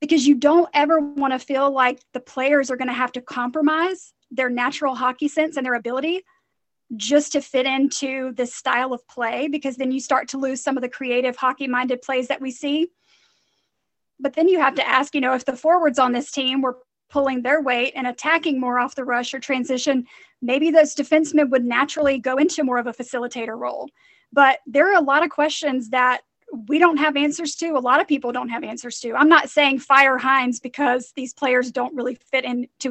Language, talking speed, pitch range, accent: English, 215 wpm, 255-300 Hz, American